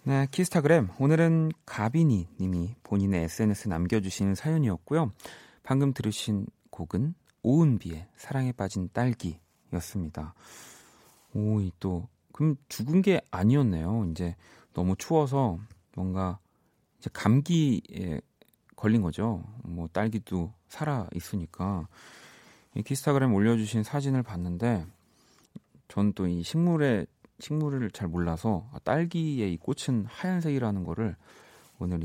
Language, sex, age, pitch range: Korean, male, 30-49, 90-140 Hz